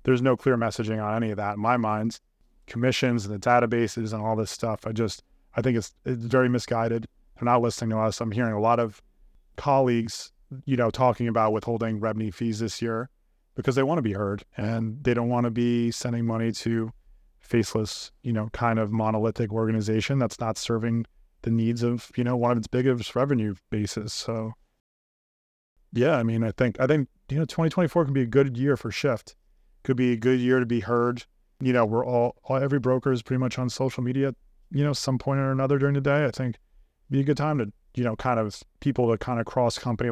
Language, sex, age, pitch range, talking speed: English, male, 30-49, 110-130 Hz, 225 wpm